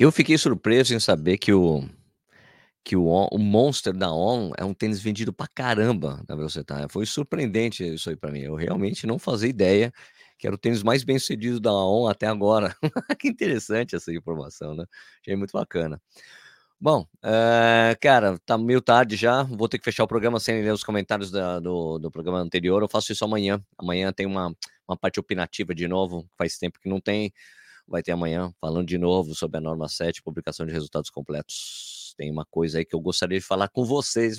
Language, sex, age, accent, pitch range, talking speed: Portuguese, male, 20-39, Brazilian, 90-110 Hz, 200 wpm